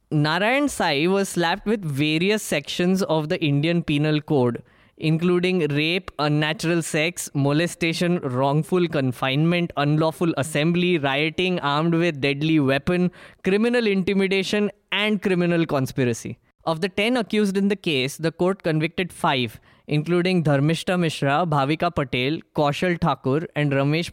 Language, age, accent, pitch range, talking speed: English, 20-39, Indian, 150-195 Hz, 125 wpm